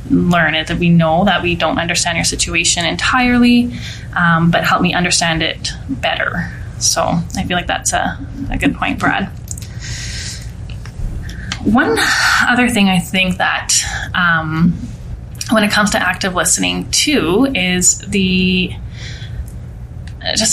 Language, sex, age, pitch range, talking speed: English, female, 20-39, 170-205 Hz, 135 wpm